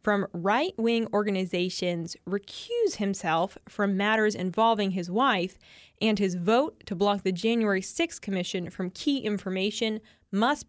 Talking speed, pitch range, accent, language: 130 wpm, 190-235 Hz, American, English